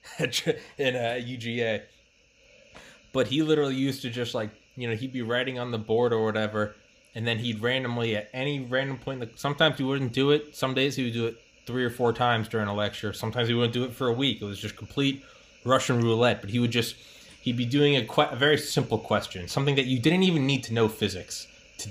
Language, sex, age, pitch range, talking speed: English, male, 20-39, 115-145 Hz, 230 wpm